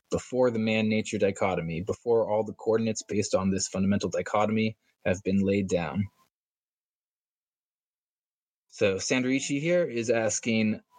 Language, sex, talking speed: English, male, 120 wpm